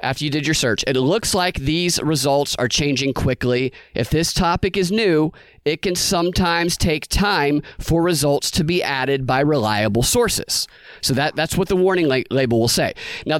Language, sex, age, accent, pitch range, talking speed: English, male, 30-49, American, 130-175 Hz, 190 wpm